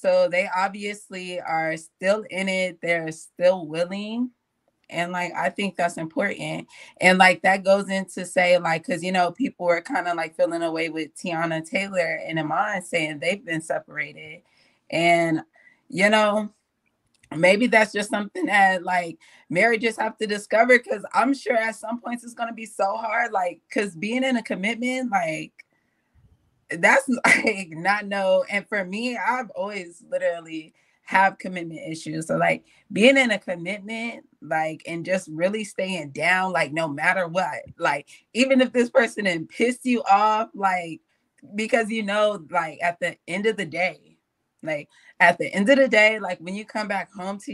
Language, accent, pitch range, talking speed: English, American, 175-225 Hz, 170 wpm